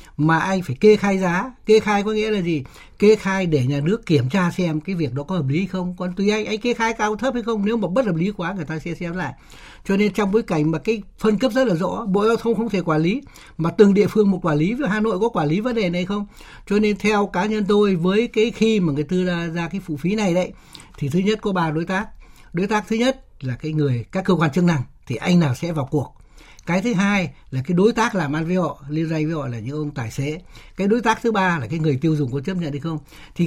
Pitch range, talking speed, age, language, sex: 155-210 Hz, 290 wpm, 60-79, Vietnamese, male